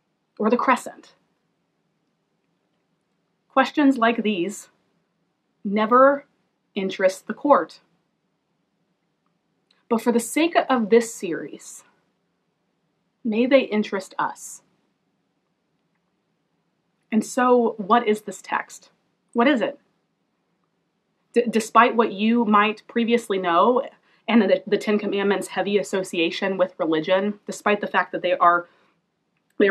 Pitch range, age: 190-235 Hz, 30-49